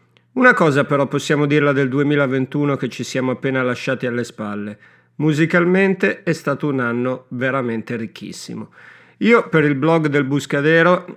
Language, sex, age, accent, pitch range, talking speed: Italian, male, 50-69, native, 130-160 Hz, 145 wpm